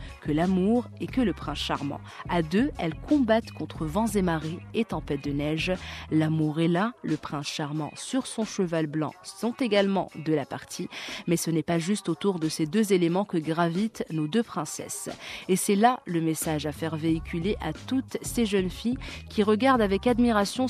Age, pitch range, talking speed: 30-49, 155-210 Hz, 190 wpm